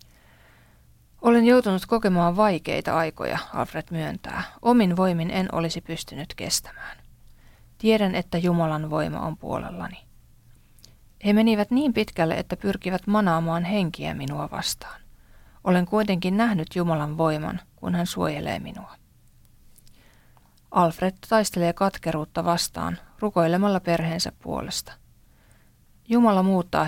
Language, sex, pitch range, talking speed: Finnish, female, 160-195 Hz, 105 wpm